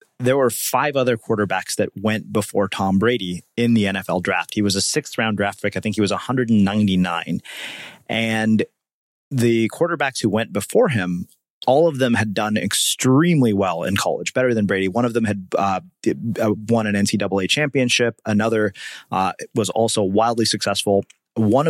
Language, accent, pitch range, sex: English, American, 100-120 Hz, male